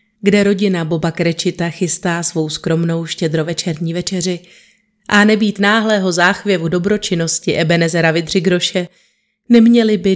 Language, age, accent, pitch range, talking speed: Czech, 30-49, native, 170-205 Hz, 105 wpm